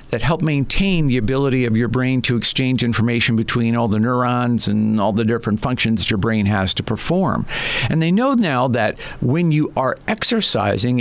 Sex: male